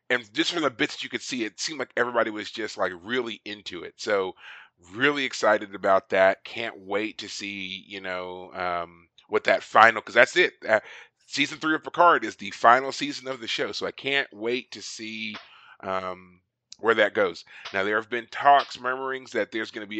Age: 30-49